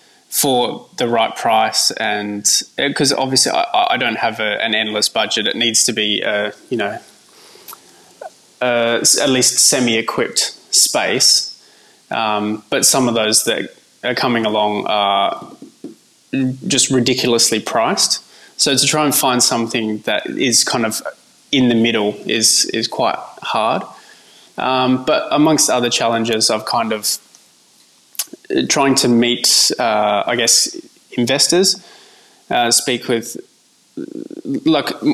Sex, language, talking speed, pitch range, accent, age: male, English, 130 wpm, 110-135 Hz, Australian, 20-39